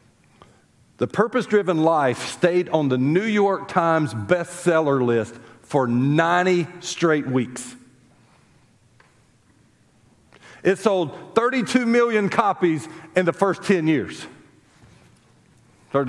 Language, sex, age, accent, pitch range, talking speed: English, male, 50-69, American, 140-210 Hz, 100 wpm